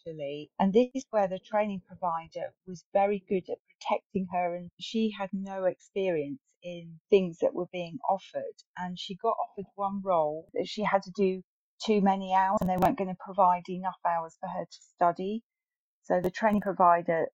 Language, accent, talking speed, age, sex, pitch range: English, British, 185 wpm, 40-59, female, 175-200 Hz